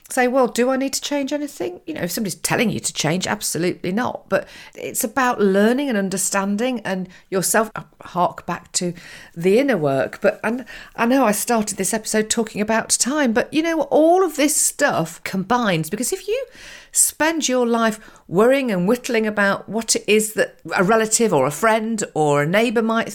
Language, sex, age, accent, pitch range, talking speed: English, female, 50-69, British, 180-260 Hz, 195 wpm